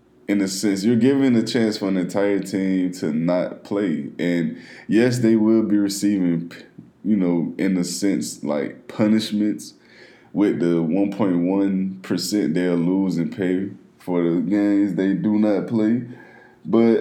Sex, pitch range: male, 95-115 Hz